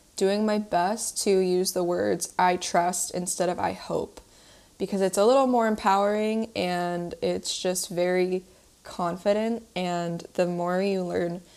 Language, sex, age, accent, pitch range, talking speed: English, female, 20-39, American, 175-195 Hz, 150 wpm